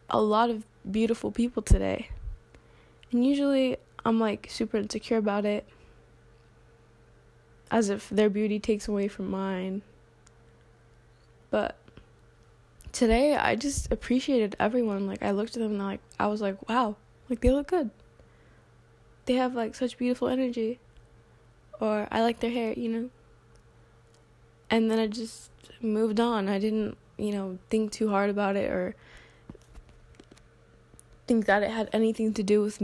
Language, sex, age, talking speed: English, female, 10-29, 145 wpm